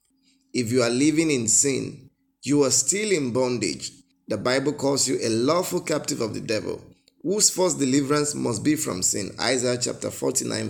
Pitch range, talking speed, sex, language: 130-165 Hz, 175 wpm, male, English